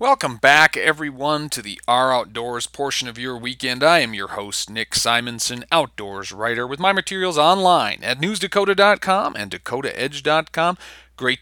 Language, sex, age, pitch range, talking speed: English, male, 40-59, 125-155 Hz, 145 wpm